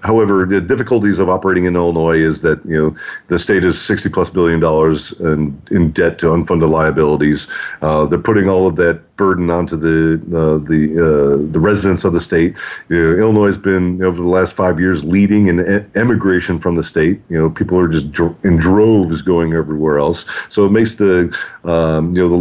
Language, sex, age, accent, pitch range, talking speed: English, male, 40-59, American, 80-100 Hz, 205 wpm